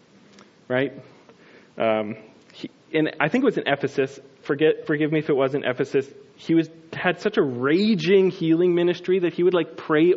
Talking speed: 175 wpm